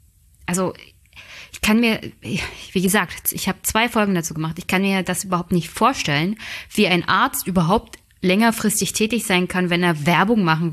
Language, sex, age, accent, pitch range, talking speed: German, female, 20-39, German, 170-215 Hz, 175 wpm